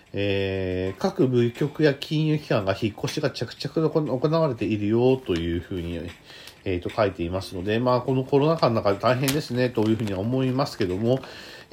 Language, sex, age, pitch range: Japanese, male, 40-59, 95-135 Hz